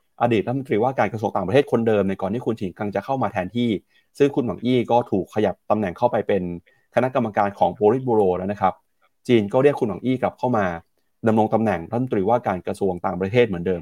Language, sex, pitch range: Thai, male, 100-130 Hz